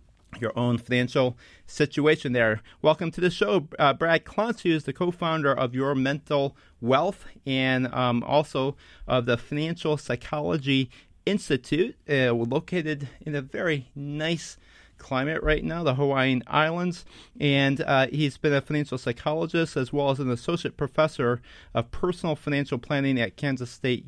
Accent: American